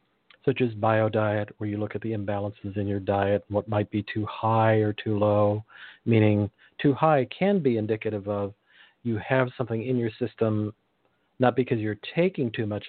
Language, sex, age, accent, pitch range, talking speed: English, male, 50-69, American, 105-120 Hz, 185 wpm